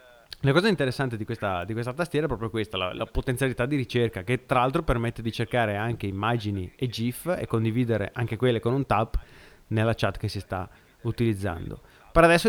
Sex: male